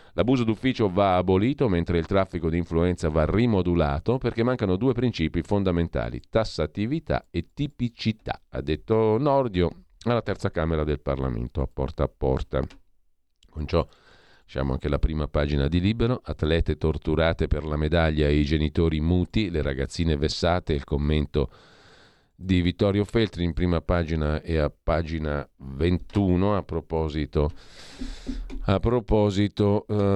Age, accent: 50-69, native